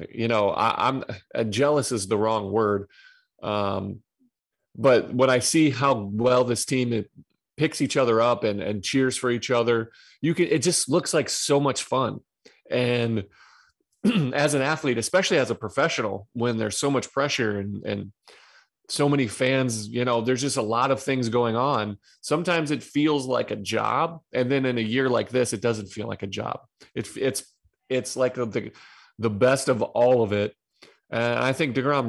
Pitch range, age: 115-135 Hz, 30-49